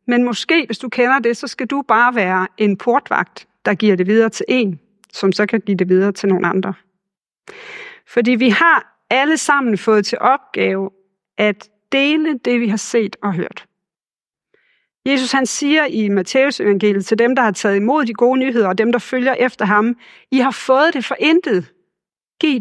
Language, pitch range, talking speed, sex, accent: Danish, 200-265 Hz, 190 wpm, female, native